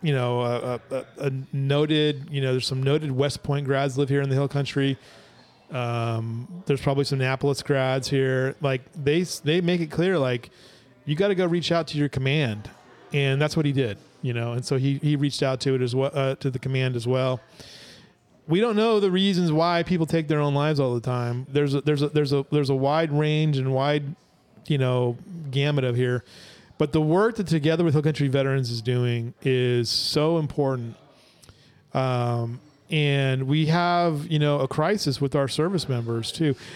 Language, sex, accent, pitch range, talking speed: English, male, American, 130-150 Hz, 200 wpm